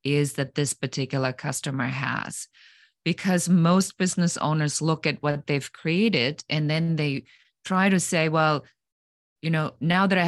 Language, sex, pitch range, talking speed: English, female, 145-175 Hz, 160 wpm